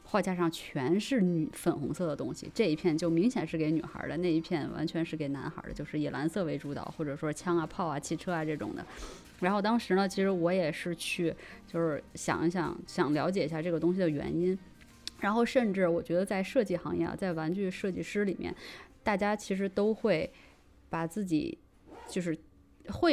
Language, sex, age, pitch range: Chinese, female, 20-39, 160-195 Hz